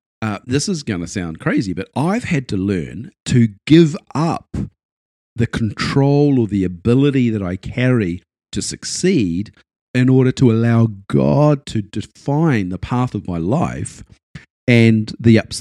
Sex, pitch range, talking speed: male, 100-130 Hz, 155 wpm